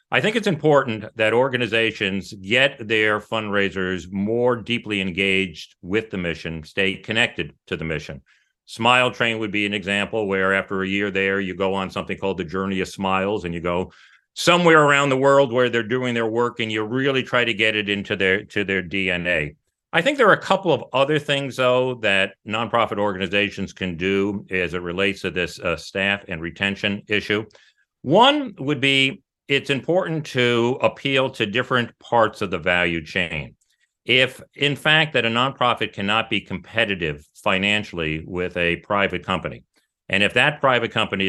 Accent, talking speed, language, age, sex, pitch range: American, 175 wpm, English, 40-59, male, 95-120 Hz